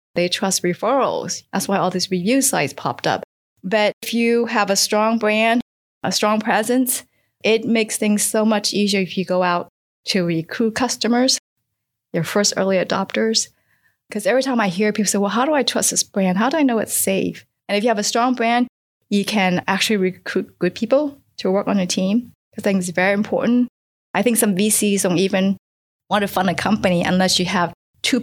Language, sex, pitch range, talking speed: English, female, 180-220 Hz, 205 wpm